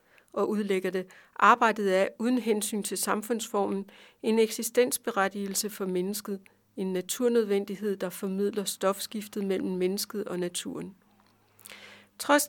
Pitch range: 190-225 Hz